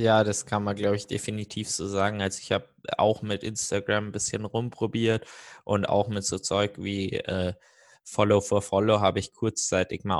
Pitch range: 95-110 Hz